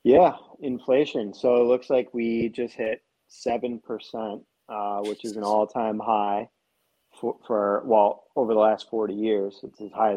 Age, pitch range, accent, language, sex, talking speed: 30-49, 110-135 Hz, American, English, male, 165 wpm